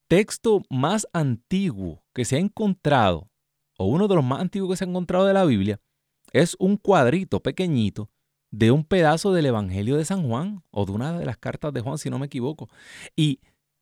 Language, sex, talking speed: Spanish, male, 195 wpm